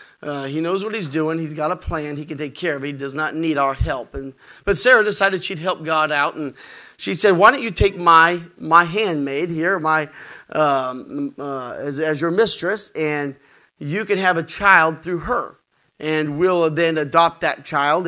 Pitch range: 145-180 Hz